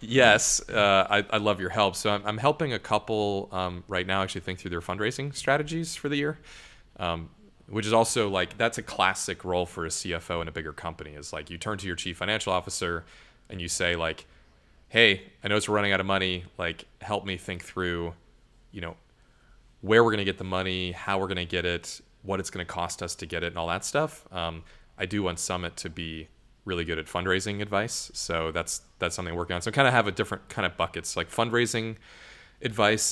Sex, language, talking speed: male, English, 230 wpm